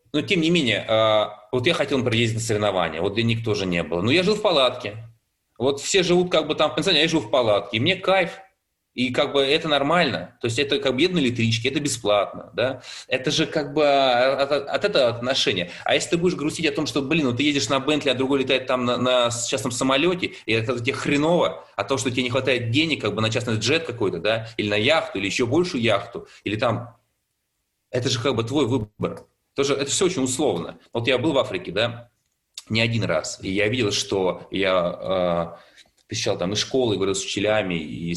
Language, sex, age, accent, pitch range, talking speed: Russian, male, 20-39, native, 105-140 Hz, 220 wpm